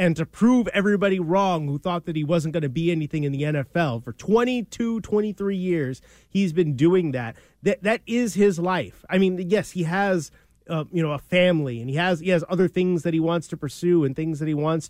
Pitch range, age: 155-190 Hz, 30-49